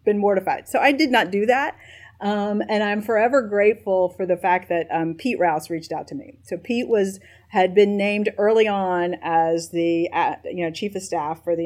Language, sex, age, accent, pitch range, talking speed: English, female, 40-59, American, 165-205 Hz, 215 wpm